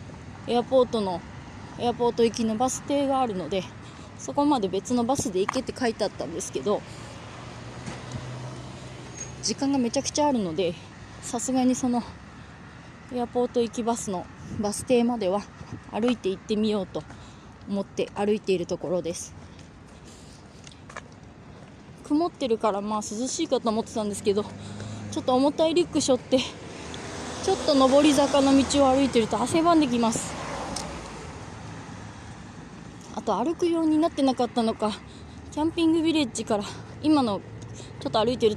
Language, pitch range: Japanese, 215-275 Hz